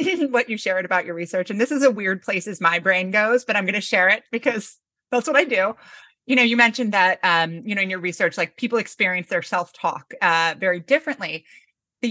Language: English